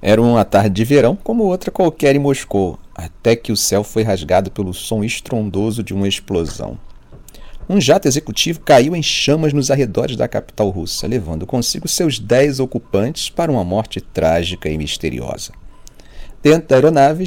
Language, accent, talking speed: Portuguese, Brazilian, 165 wpm